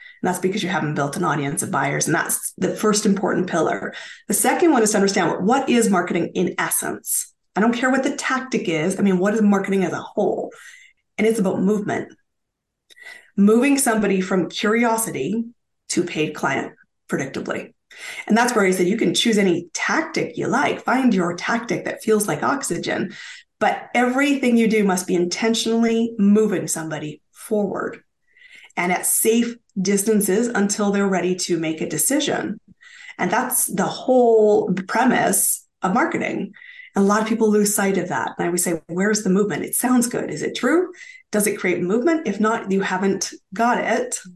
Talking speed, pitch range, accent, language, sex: 180 wpm, 190-240 Hz, American, English, female